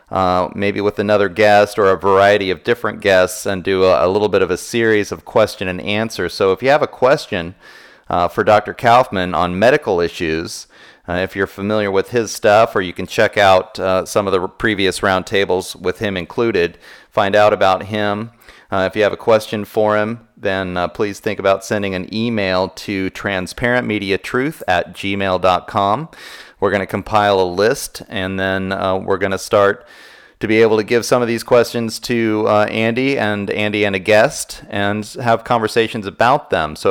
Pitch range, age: 95-110 Hz, 30-49